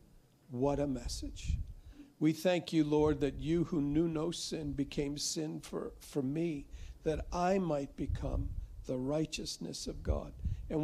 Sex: male